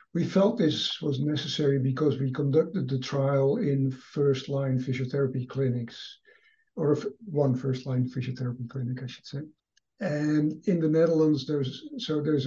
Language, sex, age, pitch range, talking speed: English, male, 60-79, 130-150 Hz, 140 wpm